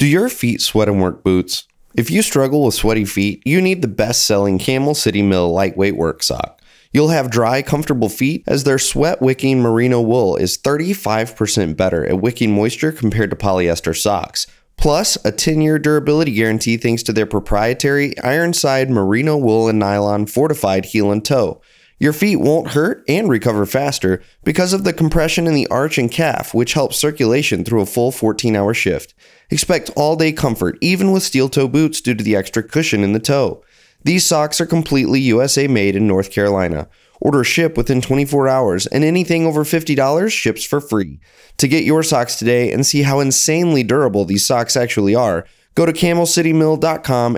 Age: 30-49